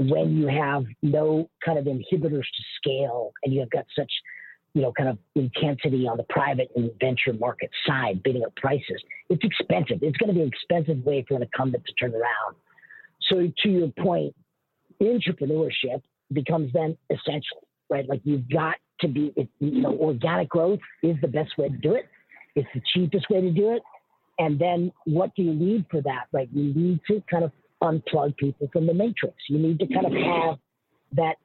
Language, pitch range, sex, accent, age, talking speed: English, 140-175 Hz, female, American, 50-69, 195 wpm